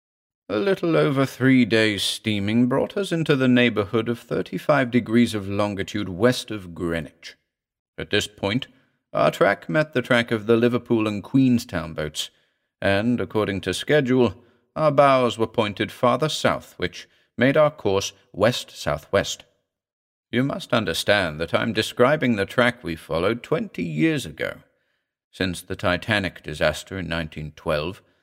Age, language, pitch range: 50-69, English, 95-130 Hz